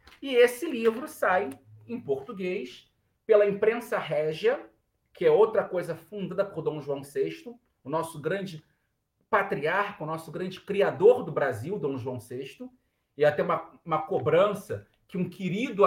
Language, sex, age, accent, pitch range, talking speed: Portuguese, male, 40-59, Brazilian, 165-235 Hz, 150 wpm